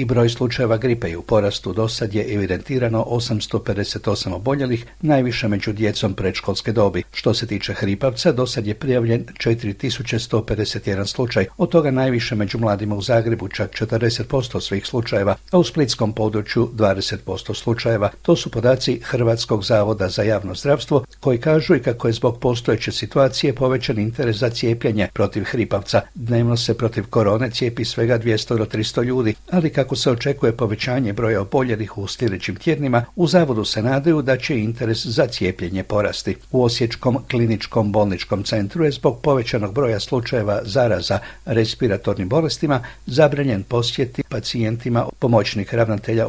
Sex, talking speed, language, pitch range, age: male, 145 wpm, Croatian, 105-130 Hz, 60-79